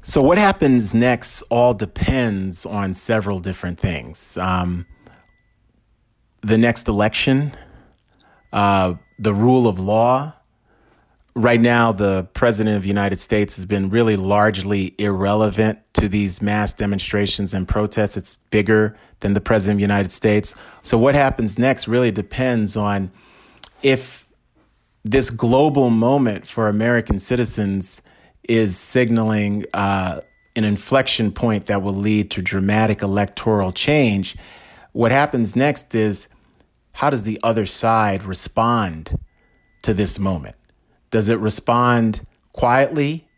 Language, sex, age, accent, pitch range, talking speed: English, male, 30-49, American, 100-120 Hz, 125 wpm